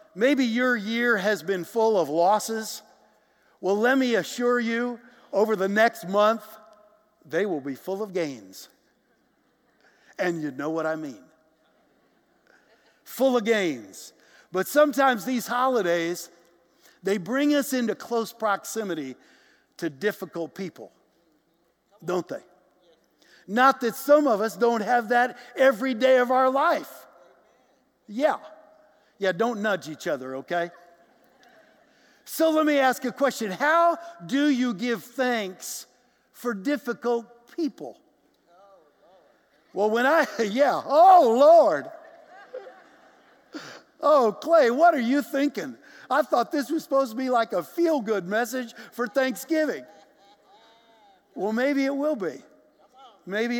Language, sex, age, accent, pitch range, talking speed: English, male, 60-79, American, 200-275 Hz, 125 wpm